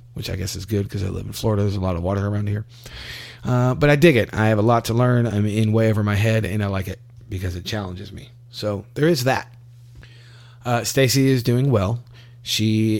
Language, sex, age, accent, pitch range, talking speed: English, male, 30-49, American, 100-120 Hz, 240 wpm